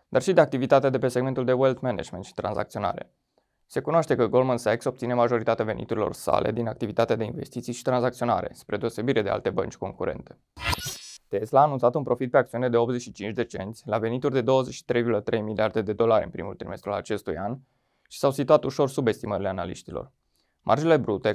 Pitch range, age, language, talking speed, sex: 110-130 Hz, 20-39, Romanian, 180 wpm, male